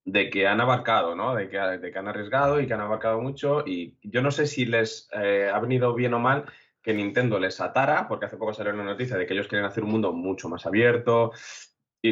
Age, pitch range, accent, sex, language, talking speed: 20-39, 100-125 Hz, Spanish, male, Spanish, 245 wpm